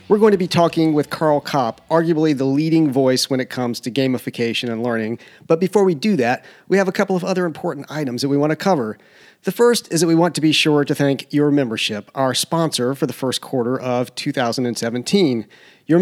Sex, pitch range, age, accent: male, 135-165 Hz, 40-59, American